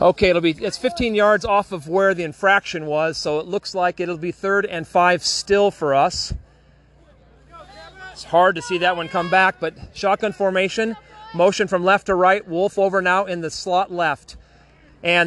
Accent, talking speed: American, 190 wpm